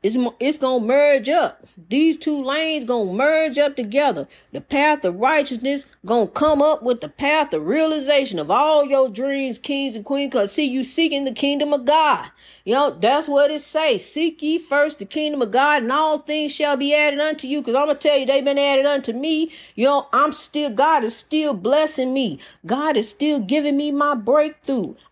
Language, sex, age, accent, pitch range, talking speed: English, female, 40-59, American, 235-290 Hz, 215 wpm